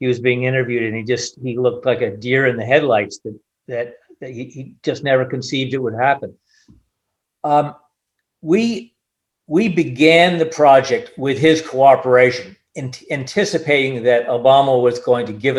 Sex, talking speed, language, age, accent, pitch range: male, 165 wpm, English, 50-69, American, 130-160 Hz